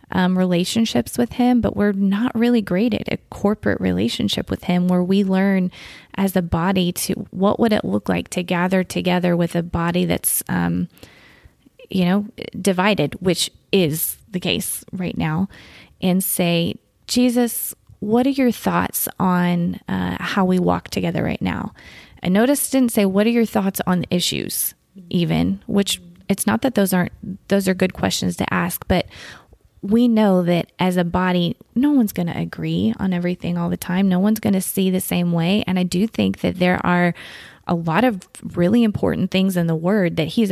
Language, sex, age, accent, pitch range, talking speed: English, female, 20-39, American, 175-200 Hz, 185 wpm